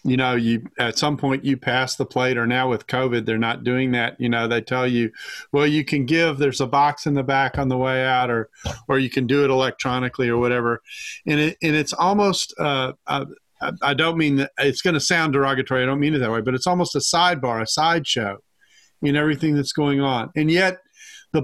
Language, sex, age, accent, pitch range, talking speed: English, male, 40-59, American, 130-165 Hz, 230 wpm